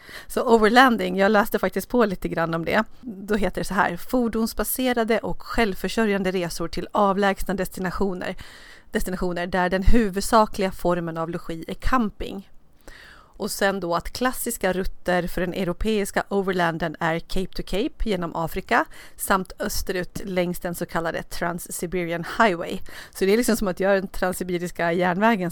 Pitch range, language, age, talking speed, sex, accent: 175-205 Hz, Swedish, 30-49, 155 wpm, female, native